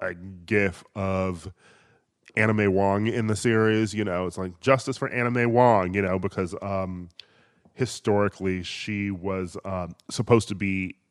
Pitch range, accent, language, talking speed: 95-115 Hz, American, English, 145 wpm